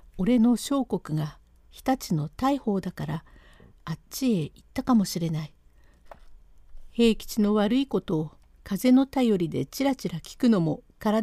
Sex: female